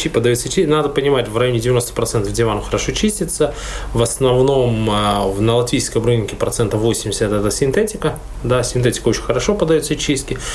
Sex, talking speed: male, 140 wpm